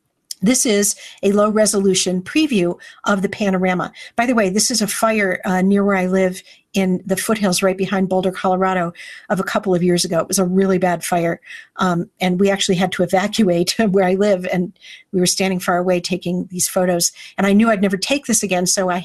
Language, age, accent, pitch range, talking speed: English, 50-69, American, 185-205 Hz, 215 wpm